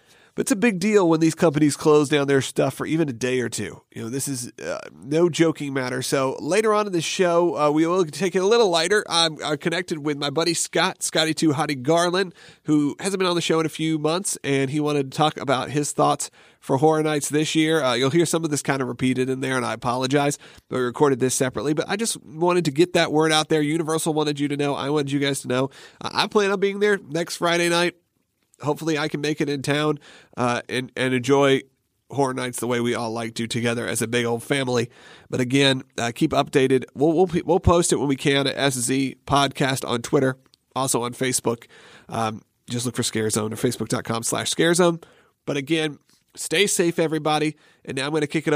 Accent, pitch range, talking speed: American, 130-165 Hz, 235 wpm